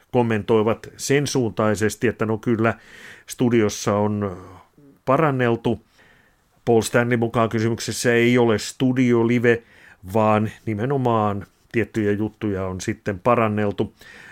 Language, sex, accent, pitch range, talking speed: Finnish, male, native, 105-120 Hz, 95 wpm